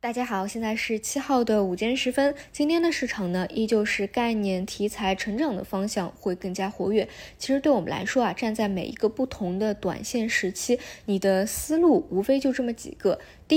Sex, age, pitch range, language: female, 20-39, 195-245 Hz, Chinese